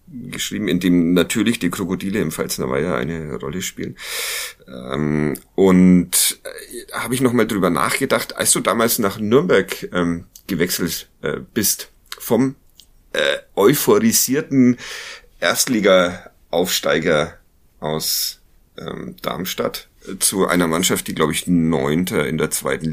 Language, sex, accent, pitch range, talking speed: German, male, German, 80-110 Hz, 105 wpm